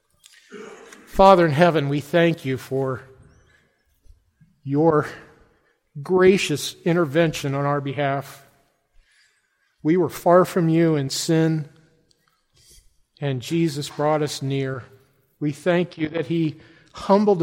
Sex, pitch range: male, 140-185 Hz